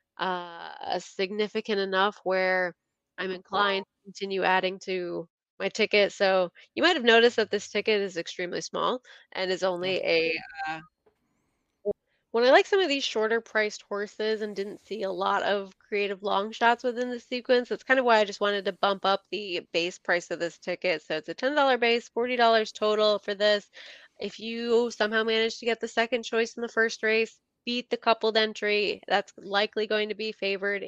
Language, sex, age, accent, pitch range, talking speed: English, female, 20-39, American, 195-225 Hz, 190 wpm